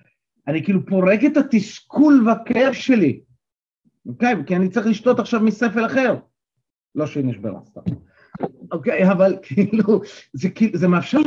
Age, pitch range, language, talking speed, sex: 40-59, 140-225 Hz, Hebrew, 145 wpm, male